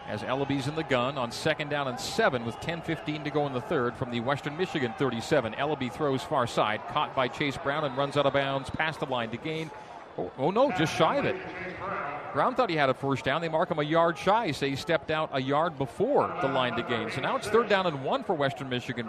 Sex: male